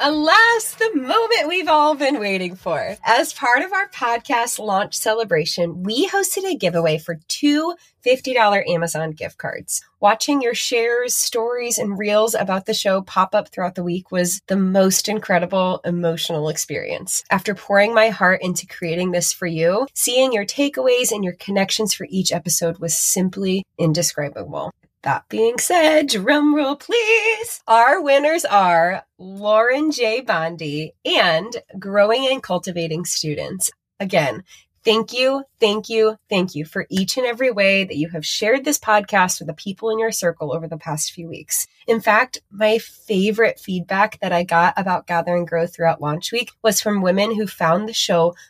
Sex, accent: female, American